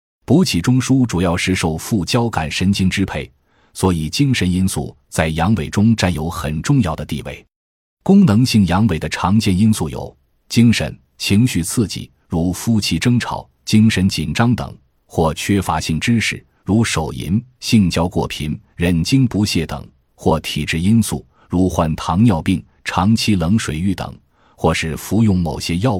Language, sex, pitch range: Chinese, male, 80-110 Hz